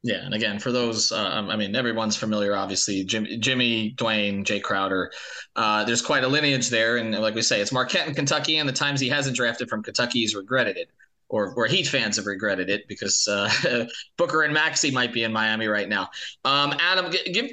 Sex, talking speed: male, 215 wpm